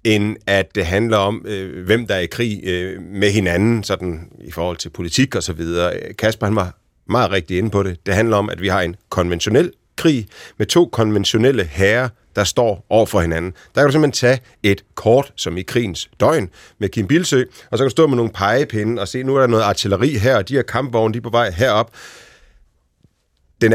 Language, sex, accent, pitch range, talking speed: Danish, male, native, 95-125 Hz, 215 wpm